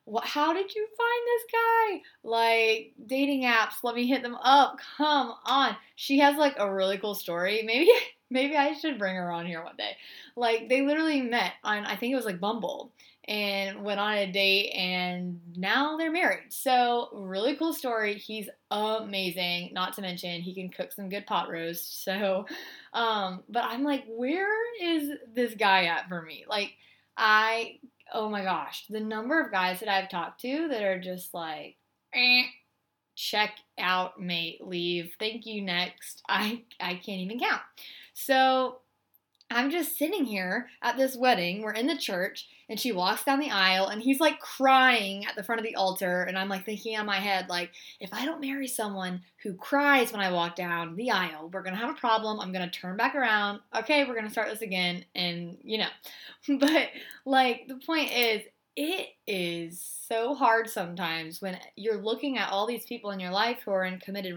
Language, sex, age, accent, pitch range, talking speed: English, female, 20-39, American, 190-265 Hz, 190 wpm